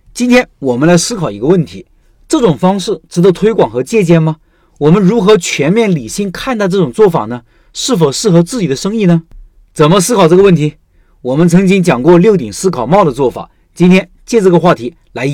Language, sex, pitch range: Chinese, male, 145-195 Hz